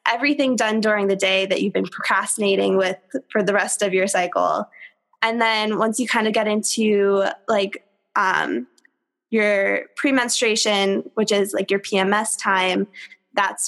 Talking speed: 155 wpm